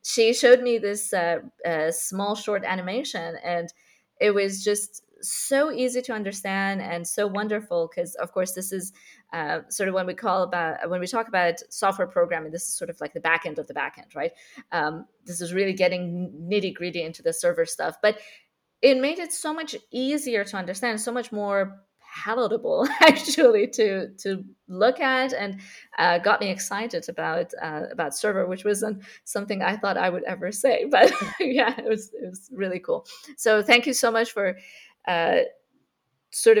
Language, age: English, 20-39